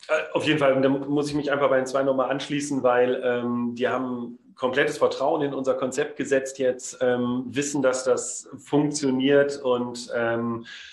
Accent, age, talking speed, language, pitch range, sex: German, 40-59, 170 wpm, German, 130-155 Hz, male